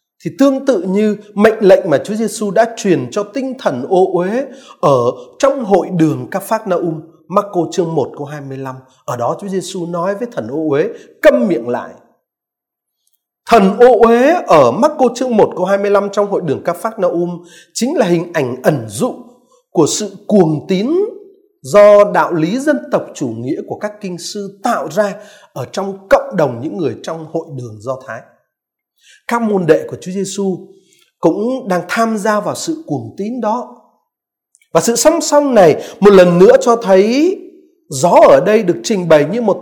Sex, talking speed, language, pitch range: male, 190 wpm, Vietnamese, 180-265 Hz